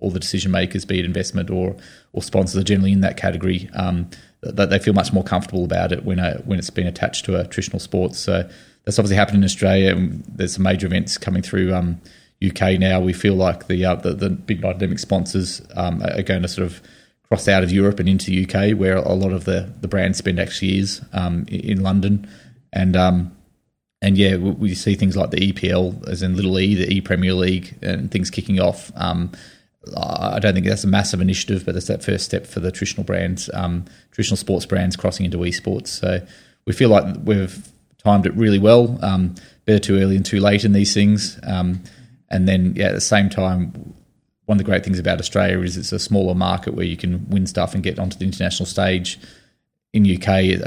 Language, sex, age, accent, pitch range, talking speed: English, male, 20-39, Australian, 90-100 Hz, 220 wpm